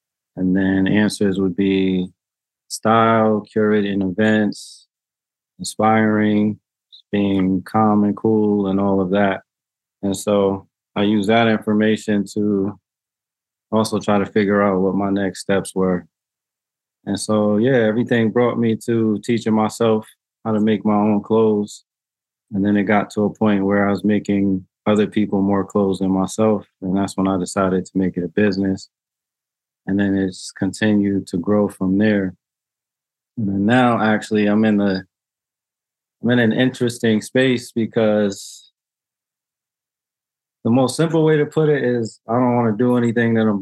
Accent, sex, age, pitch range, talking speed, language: American, male, 20-39, 100-110 Hz, 150 wpm, English